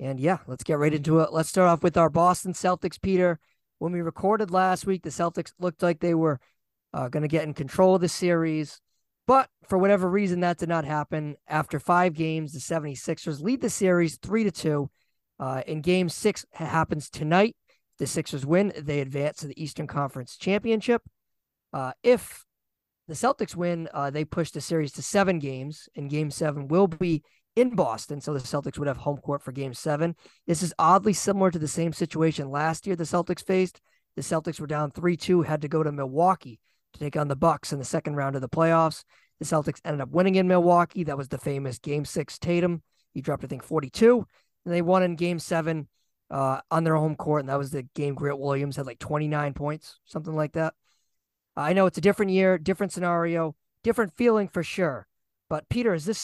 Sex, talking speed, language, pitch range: male, 205 wpm, English, 145-180 Hz